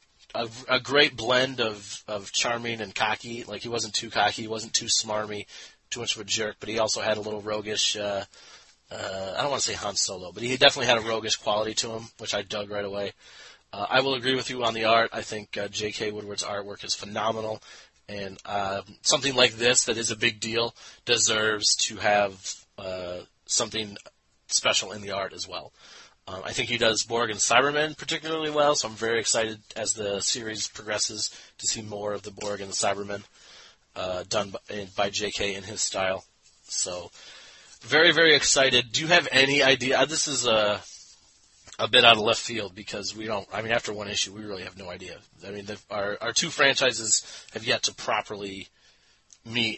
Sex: male